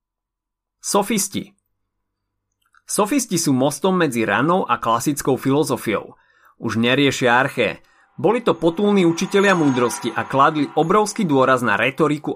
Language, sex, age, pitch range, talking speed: Slovak, male, 30-49, 120-175 Hz, 110 wpm